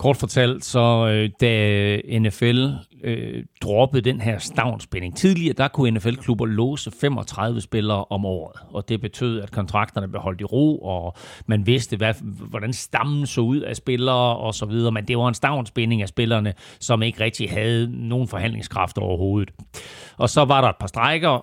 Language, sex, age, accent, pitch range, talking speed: Danish, male, 40-59, native, 110-135 Hz, 170 wpm